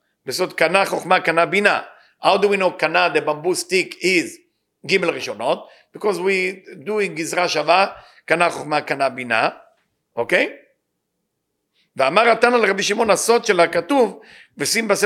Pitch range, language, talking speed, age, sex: 170-215 Hz, English, 100 wpm, 50-69, male